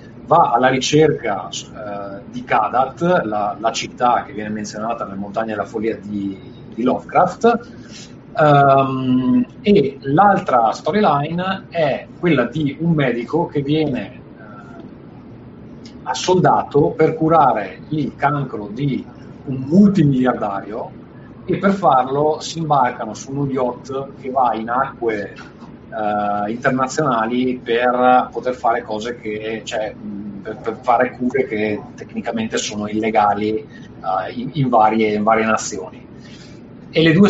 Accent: native